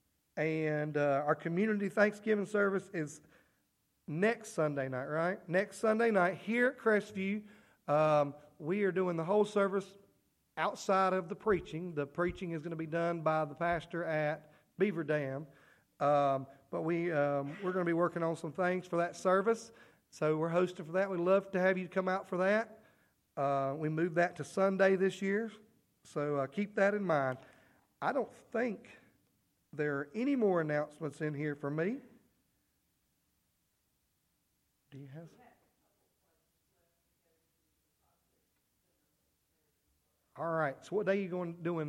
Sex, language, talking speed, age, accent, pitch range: male, English, 155 wpm, 40-59, American, 155-205 Hz